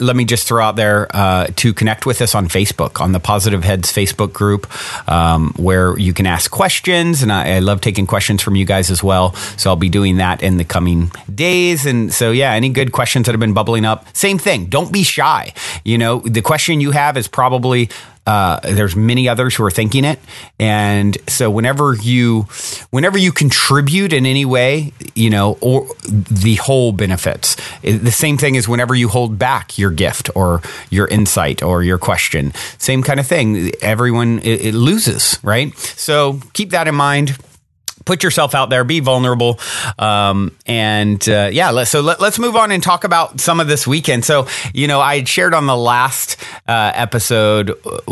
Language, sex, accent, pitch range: English, male, American, 105-140 Hz